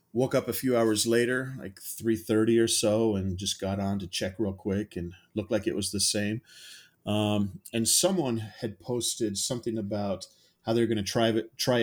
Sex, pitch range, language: male, 100-120 Hz, English